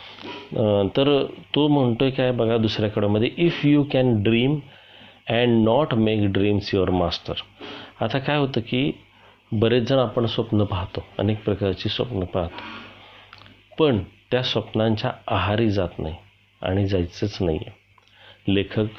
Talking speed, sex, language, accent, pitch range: 125 wpm, male, Marathi, native, 100-120 Hz